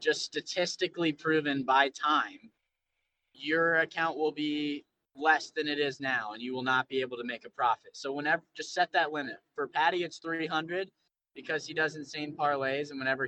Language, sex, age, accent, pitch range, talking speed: English, male, 20-39, American, 130-160 Hz, 185 wpm